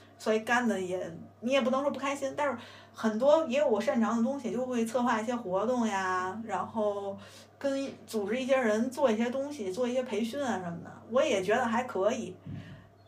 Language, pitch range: Chinese, 195-255 Hz